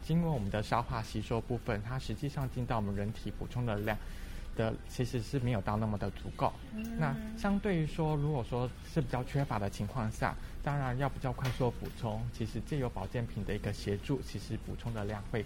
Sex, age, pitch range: male, 20-39, 105-135 Hz